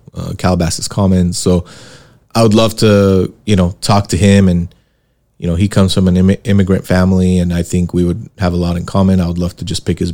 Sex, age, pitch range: male, 30-49, 90-105 Hz